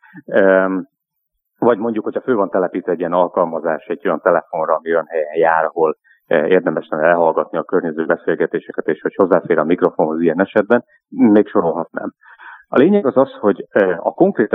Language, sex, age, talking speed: Hungarian, male, 30-49, 155 wpm